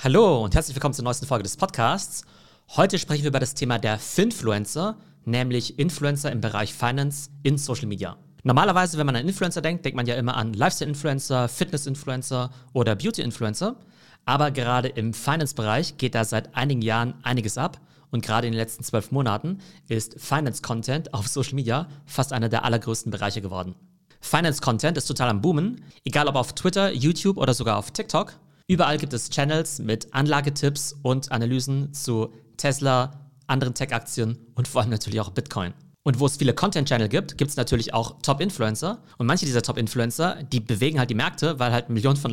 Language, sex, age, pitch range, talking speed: German, male, 40-59, 115-150 Hz, 175 wpm